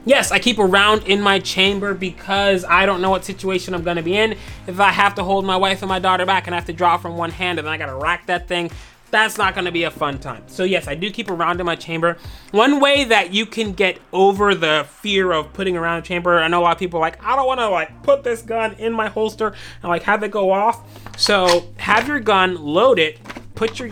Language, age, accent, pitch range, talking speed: English, 30-49, American, 165-210 Hz, 265 wpm